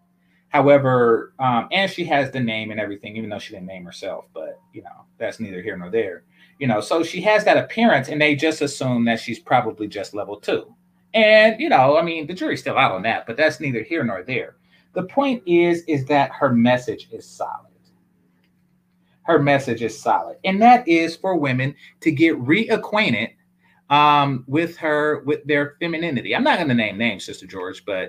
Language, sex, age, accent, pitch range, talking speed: English, male, 30-49, American, 125-180 Hz, 195 wpm